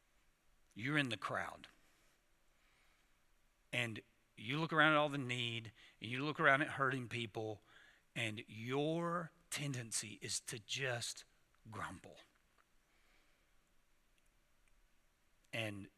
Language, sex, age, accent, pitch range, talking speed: English, male, 50-69, American, 115-150 Hz, 100 wpm